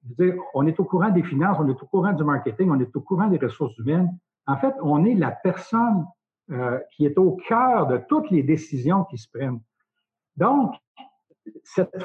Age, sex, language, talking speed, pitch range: 60-79, male, French, 195 wpm, 135-190 Hz